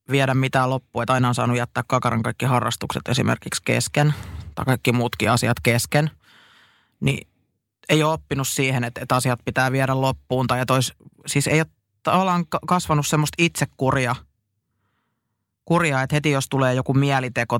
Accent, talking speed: native, 145 wpm